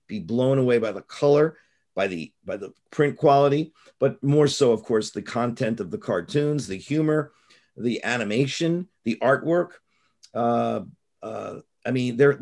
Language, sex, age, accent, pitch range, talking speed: English, male, 50-69, American, 125-205 Hz, 160 wpm